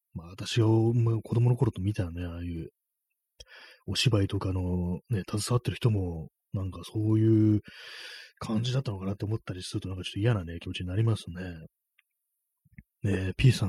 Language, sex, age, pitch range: Japanese, male, 30-49, 90-120 Hz